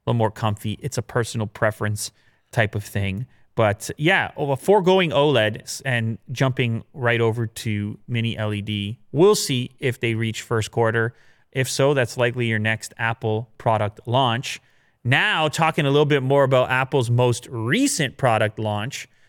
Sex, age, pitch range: male, 30-49, 115-150 Hz